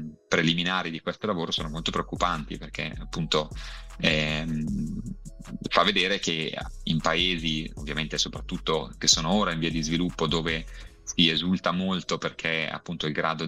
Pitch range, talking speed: 80-85 Hz, 140 wpm